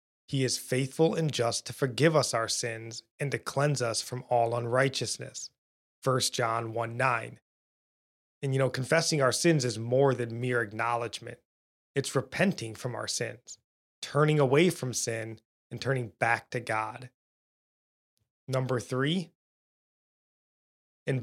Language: English